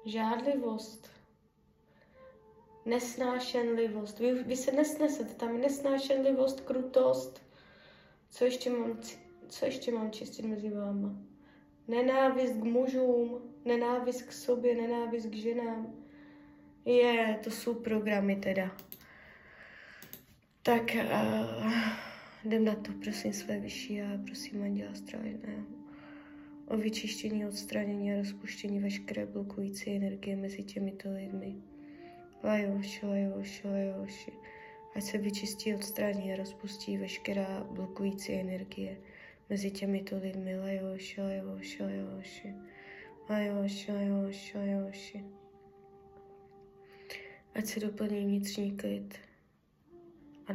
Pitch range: 195-240 Hz